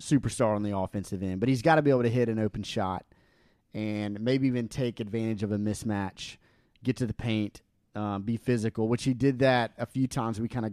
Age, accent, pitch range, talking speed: 30-49, American, 105-130 Hz, 230 wpm